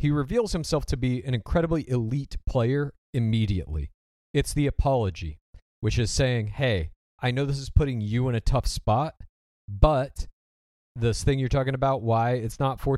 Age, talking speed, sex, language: 40-59, 170 wpm, male, English